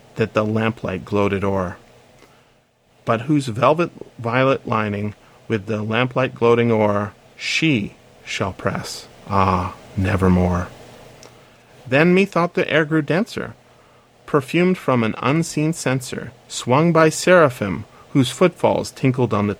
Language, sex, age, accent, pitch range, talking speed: English, male, 40-59, American, 115-160 Hz, 115 wpm